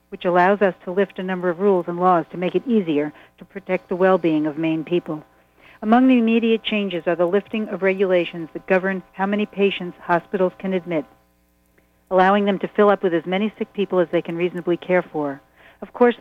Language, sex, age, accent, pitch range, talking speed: English, female, 60-79, American, 175-205 Hz, 210 wpm